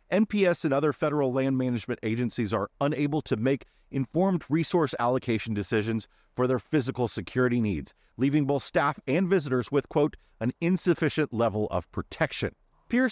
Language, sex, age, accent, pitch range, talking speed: English, male, 40-59, American, 125-160 Hz, 150 wpm